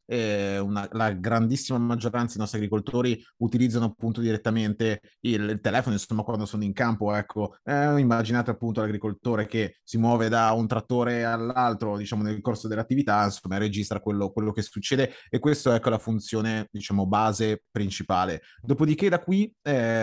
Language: Italian